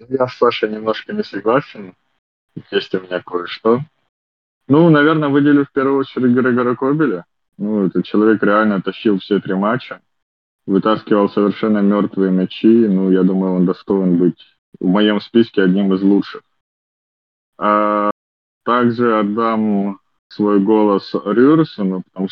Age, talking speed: 20-39, 130 wpm